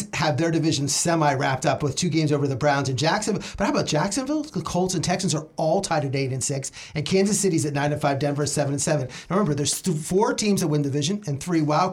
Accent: American